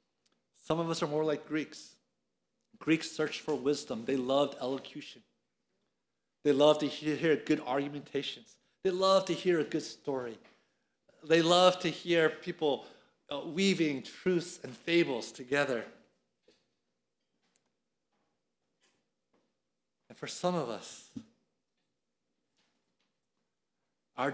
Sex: male